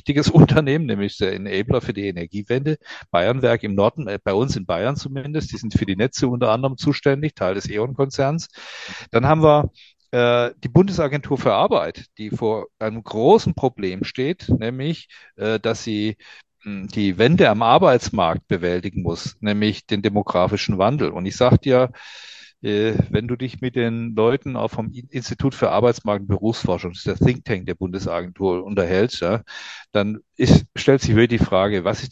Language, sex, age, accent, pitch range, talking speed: German, male, 40-59, German, 105-135 Hz, 170 wpm